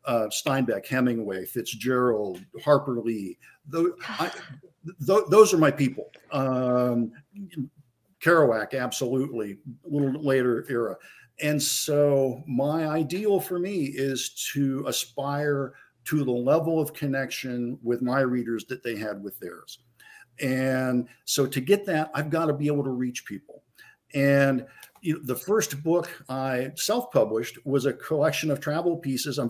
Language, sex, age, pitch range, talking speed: English, male, 50-69, 130-165 Hz, 130 wpm